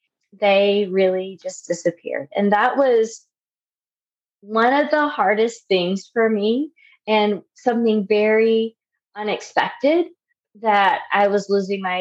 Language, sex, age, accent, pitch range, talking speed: English, female, 20-39, American, 175-220 Hz, 115 wpm